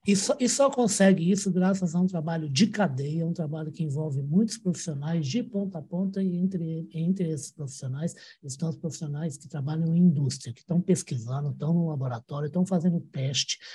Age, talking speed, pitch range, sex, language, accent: 60-79, 185 wpm, 145-190 Hz, male, Portuguese, Brazilian